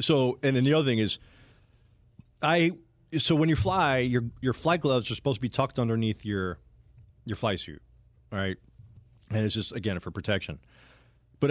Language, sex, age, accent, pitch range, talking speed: English, male, 40-59, American, 100-125 Hz, 175 wpm